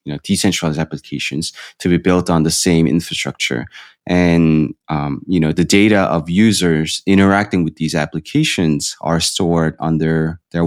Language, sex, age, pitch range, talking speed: English, male, 20-39, 80-90 Hz, 150 wpm